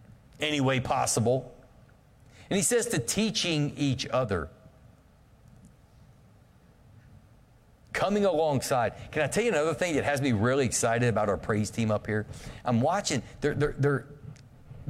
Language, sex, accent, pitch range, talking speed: English, male, American, 115-150 Hz, 130 wpm